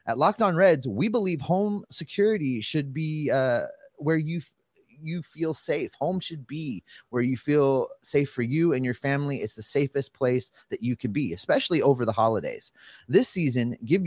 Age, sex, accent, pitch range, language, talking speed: 30-49, male, American, 120-170 Hz, English, 190 wpm